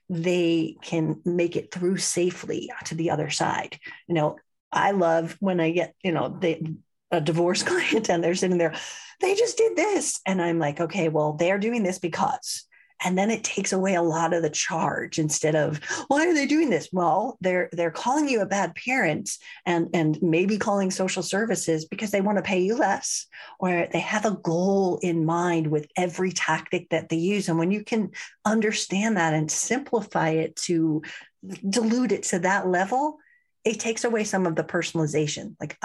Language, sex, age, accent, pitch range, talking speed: English, female, 40-59, American, 165-220 Hz, 190 wpm